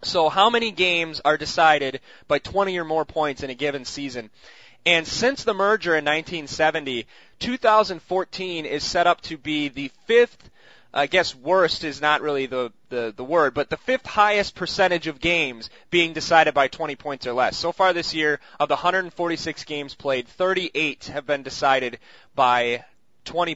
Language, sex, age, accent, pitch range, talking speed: English, male, 20-39, American, 135-180 Hz, 170 wpm